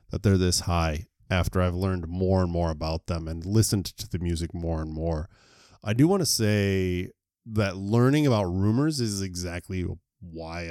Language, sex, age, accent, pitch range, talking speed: English, male, 20-39, American, 95-120 Hz, 180 wpm